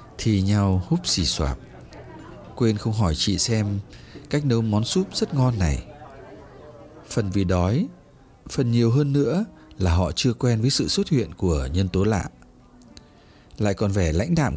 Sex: male